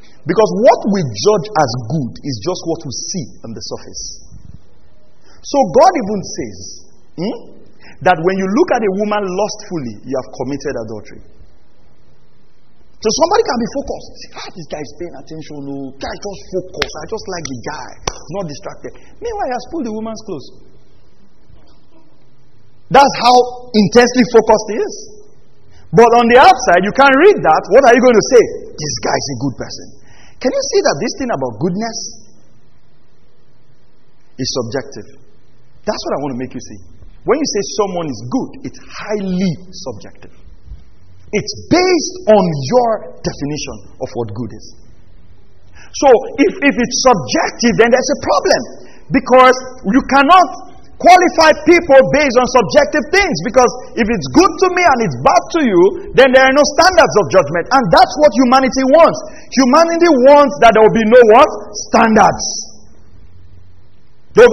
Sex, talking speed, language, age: male, 160 wpm, English, 40-59